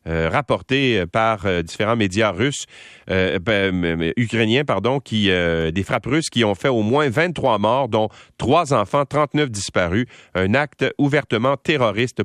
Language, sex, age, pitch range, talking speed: French, male, 40-59, 95-130 Hz, 145 wpm